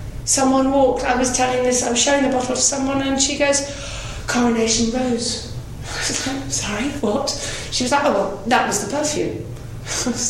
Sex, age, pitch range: female, 40-59, 185-270 Hz